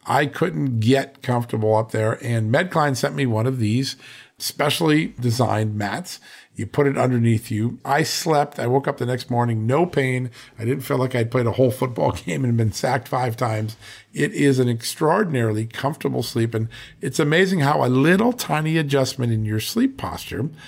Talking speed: 185 wpm